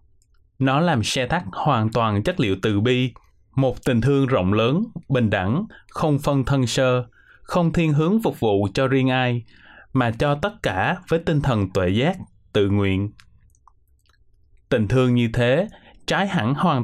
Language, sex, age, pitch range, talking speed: Vietnamese, male, 20-39, 105-140 Hz, 170 wpm